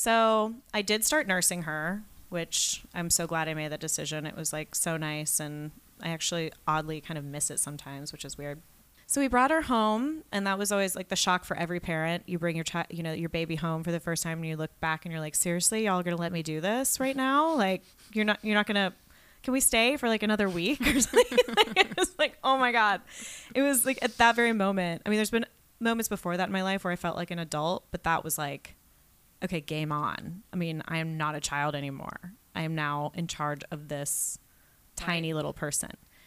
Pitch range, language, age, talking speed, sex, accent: 160-210 Hz, English, 30-49, 240 wpm, female, American